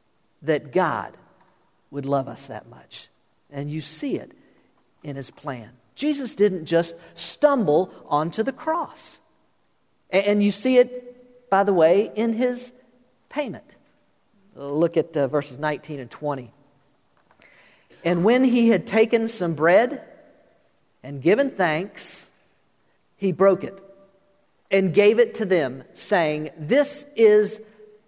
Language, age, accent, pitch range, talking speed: English, 50-69, American, 160-225 Hz, 125 wpm